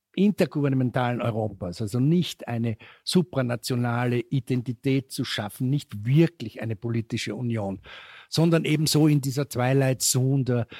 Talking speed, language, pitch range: 120 wpm, German, 120-150 Hz